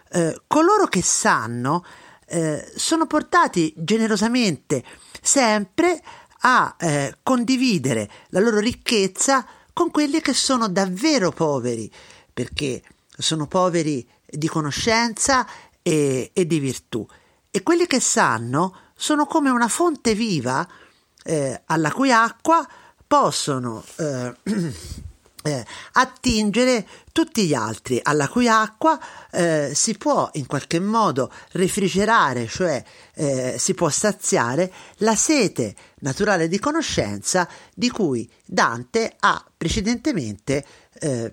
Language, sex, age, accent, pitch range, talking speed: Italian, male, 50-69, native, 150-250 Hz, 105 wpm